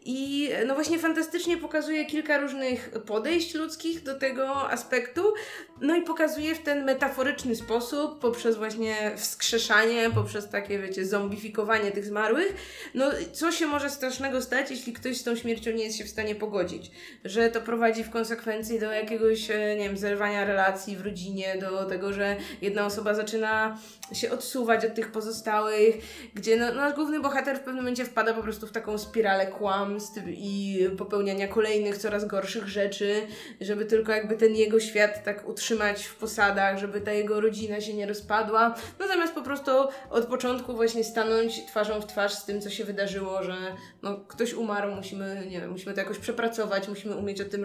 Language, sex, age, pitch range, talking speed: Polish, female, 20-39, 205-265 Hz, 175 wpm